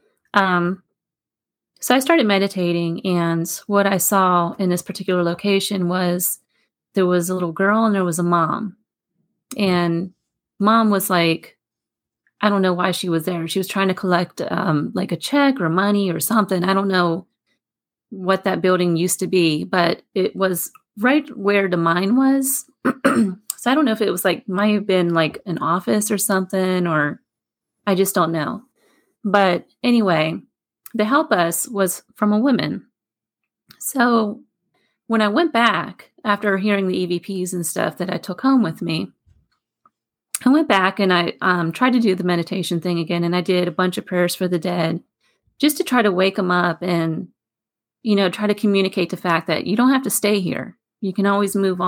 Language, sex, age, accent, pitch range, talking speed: English, female, 30-49, American, 175-210 Hz, 185 wpm